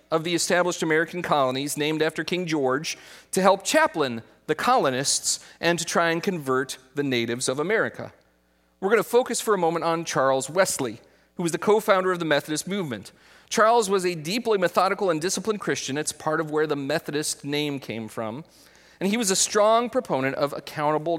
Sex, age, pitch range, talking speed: male, 40-59, 130-195 Hz, 185 wpm